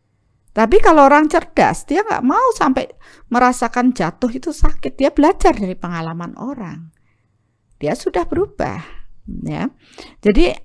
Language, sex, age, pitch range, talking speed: Indonesian, female, 40-59, 170-275 Hz, 125 wpm